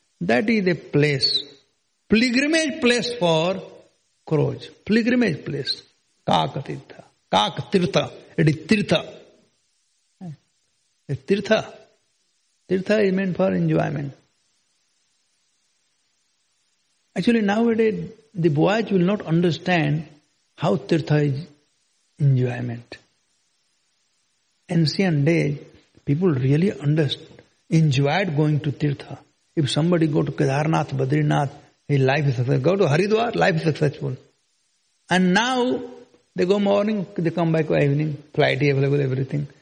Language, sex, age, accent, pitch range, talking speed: English, male, 60-79, Indian, 145-195 Hz, 110 wpm